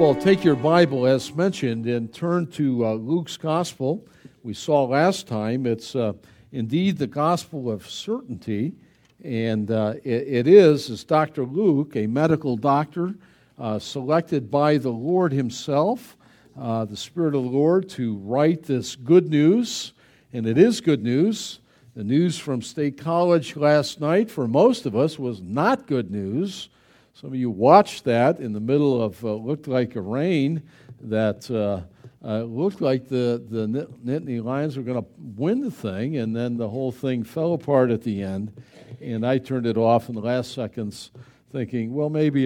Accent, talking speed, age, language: American, 170 wpm, 50-69, English